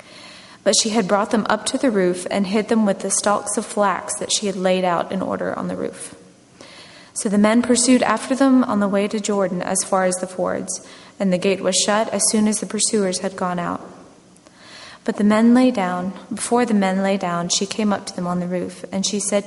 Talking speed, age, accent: 235 wpm, 20-39, American